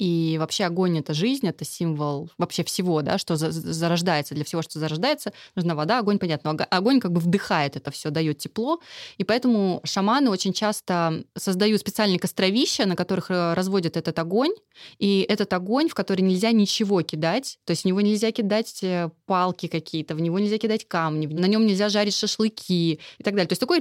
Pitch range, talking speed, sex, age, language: 170-220 Hz, 185 wpm, female, 20-39, Russian